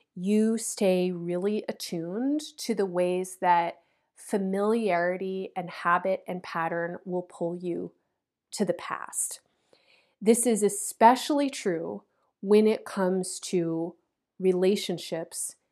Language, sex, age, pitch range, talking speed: English, female, 30-49, 180-225 Hz, 105 wpm